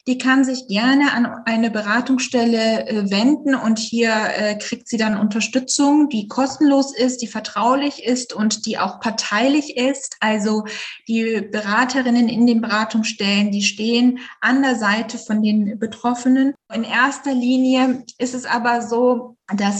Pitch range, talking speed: 215-245 Hz, 140 wpm